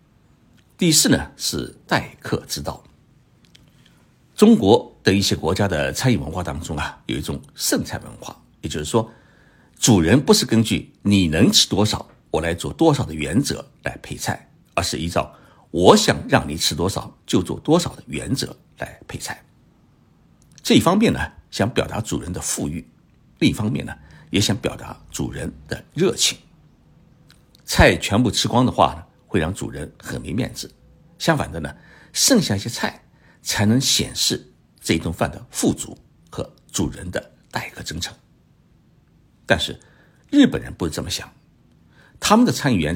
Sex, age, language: male, 60-79, Chinese